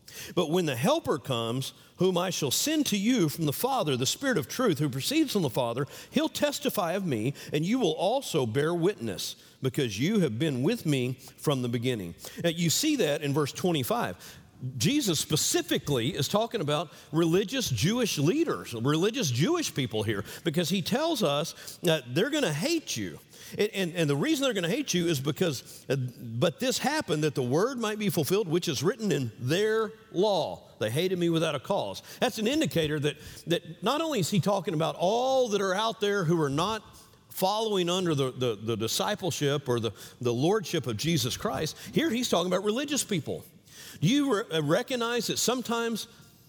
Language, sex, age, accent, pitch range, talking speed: English, male, 50-69, American, 135-205 Hz, 190 wpm